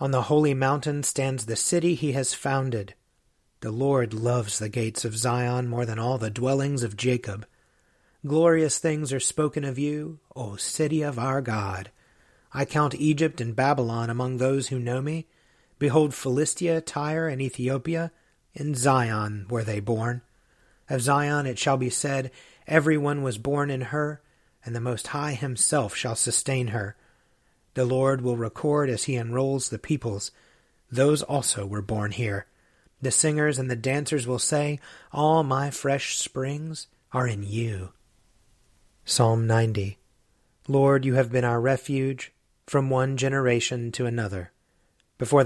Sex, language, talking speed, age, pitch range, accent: male, English, 155 wpm, 40-59, 115-140 Hz, American